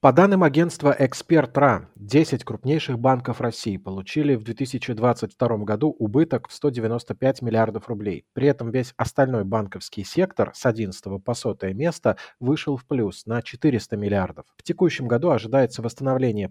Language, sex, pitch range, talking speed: Russian, male, 110-145 Hz, 140 wpm